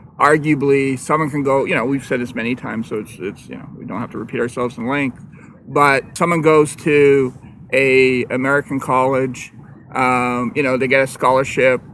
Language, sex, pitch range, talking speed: English, male, 125-150 Hz, 190 wpm